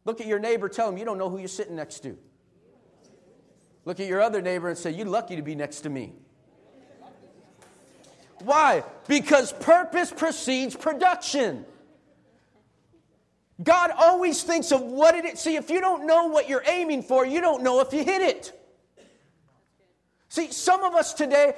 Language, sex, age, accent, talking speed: English, male, 40-59, American, 170 wpm